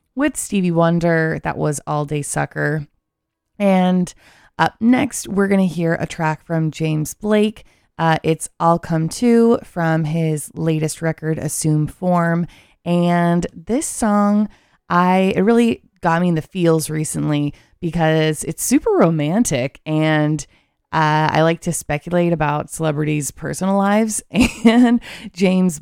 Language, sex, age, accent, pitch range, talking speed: English, female, 20-39, American, 150-185 Hz, 135 wpm